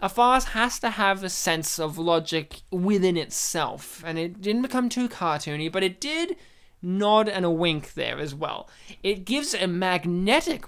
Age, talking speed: 20-39, 175 wpm